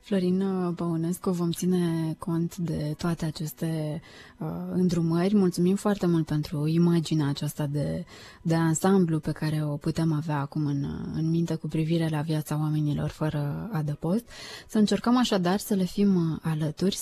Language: Romanian